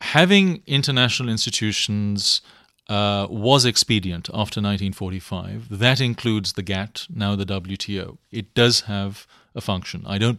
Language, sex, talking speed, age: English, male, 125 wpm, 30-49